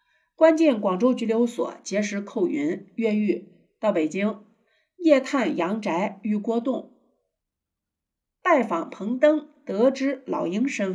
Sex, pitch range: female, 215-295 Hz